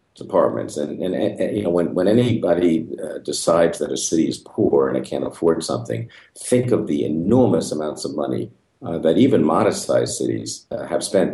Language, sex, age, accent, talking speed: English, male, 50-69, American, 195 wpm